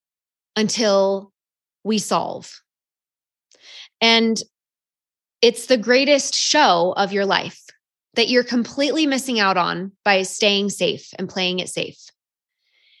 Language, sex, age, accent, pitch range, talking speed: English, female, 20-39, American, 190-240 Hz, 110 wpm